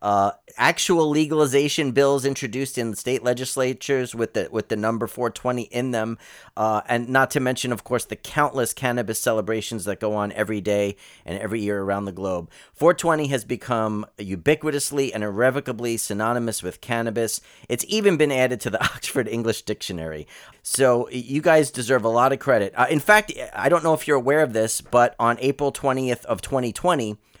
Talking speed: 175 wpm